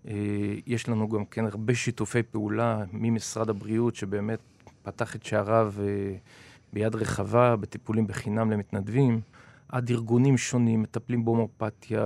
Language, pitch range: Hebrew, 110-140 Hz